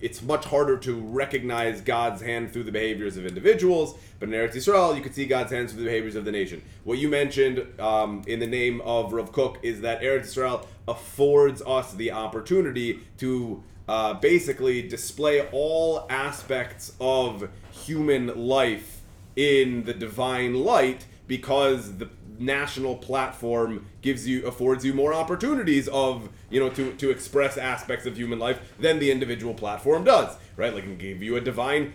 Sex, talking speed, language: male, 170 wpm, English